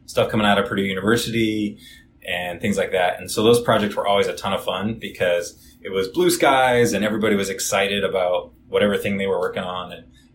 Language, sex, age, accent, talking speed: English, male, 20-39, American, 215 wpm